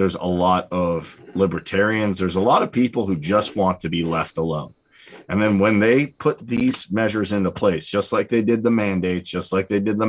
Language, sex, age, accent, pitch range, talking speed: English, male, 30-49, American, 90-110 Hz, 220 wpm